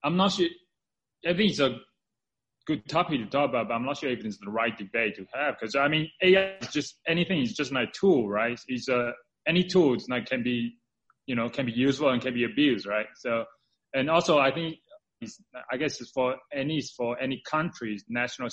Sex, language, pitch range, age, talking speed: male, English, 120-160 Hz, 20-39, 220 wpm